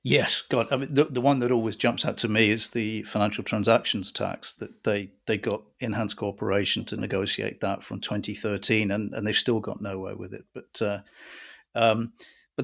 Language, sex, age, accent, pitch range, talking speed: English, male, 40-59, British, 105-135 Hz, 200 wpm